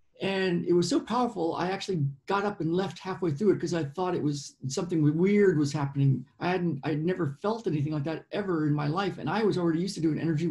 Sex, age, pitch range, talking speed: male, 50-69, 150-190 Hz, 245 wpm